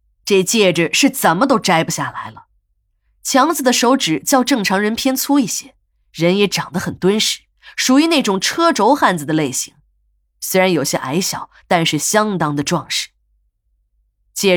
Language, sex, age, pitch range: Chinese, female, 20-39, 160-250 Hz